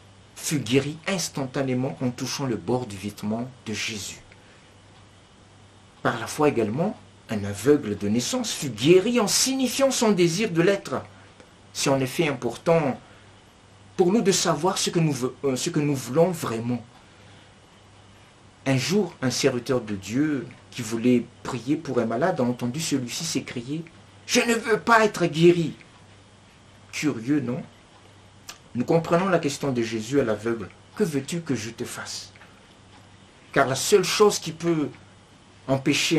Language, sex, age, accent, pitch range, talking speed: French, male, 50-69, French, 105-160 Hz, 145 wpm